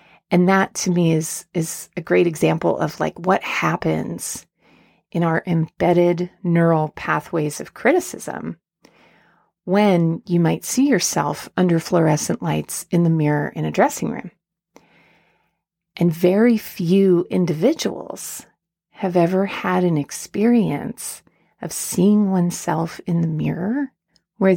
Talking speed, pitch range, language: 125 wpm, 165-190 Hz, English